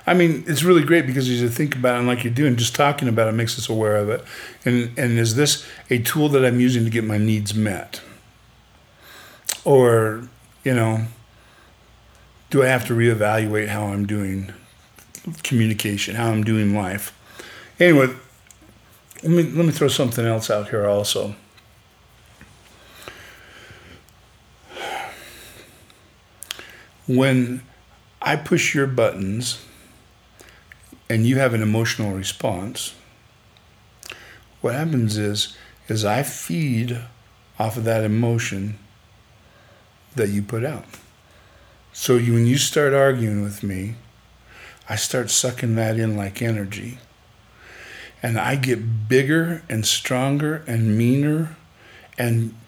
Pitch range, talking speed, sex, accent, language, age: 110-130 Hz, 130 wpm, male, American, English, 50-69